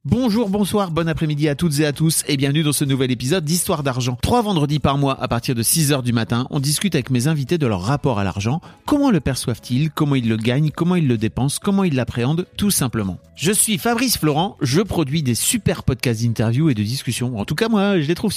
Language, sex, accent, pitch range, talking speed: French, male, French, 120-165 Hz, 240 wpm